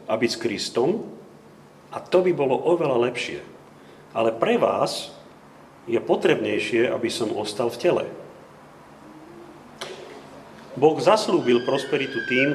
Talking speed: 110 wpm